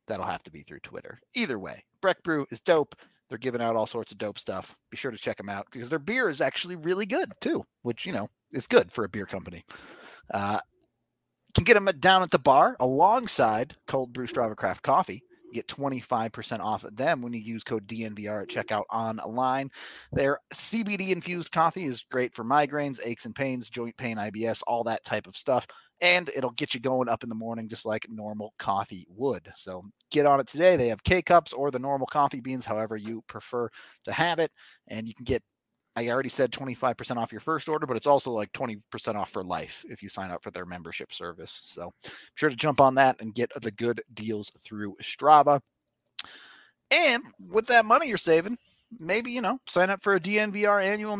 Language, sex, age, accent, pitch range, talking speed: English, male, 30-49, American, 115-175 Hz, 210 wpm